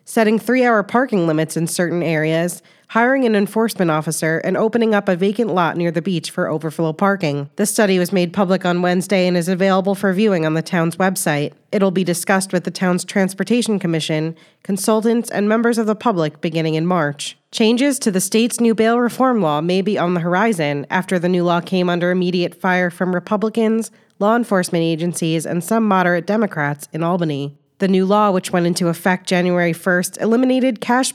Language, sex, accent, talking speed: English, female, American, 190 wpm